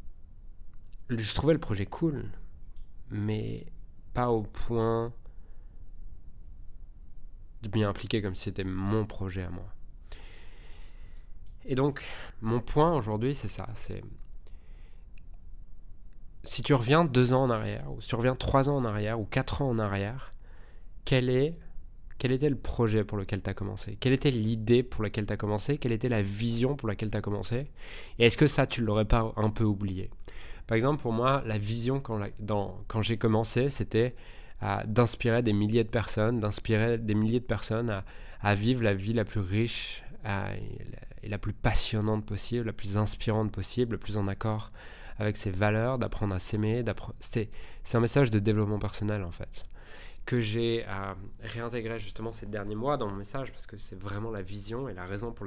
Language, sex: French, male